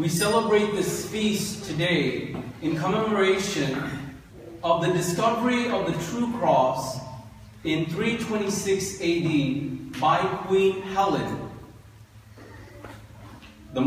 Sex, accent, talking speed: male, American, 90 wpm